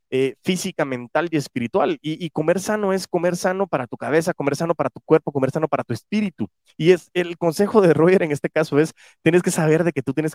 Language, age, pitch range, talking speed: Spanish, 30-49, 125-160 Hz, 245 wpm